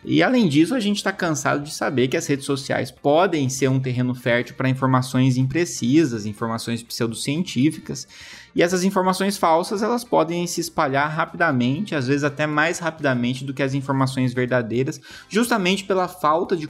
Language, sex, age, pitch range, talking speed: Portuguese, male, 20-39, 130-175 Hz, 160 wpm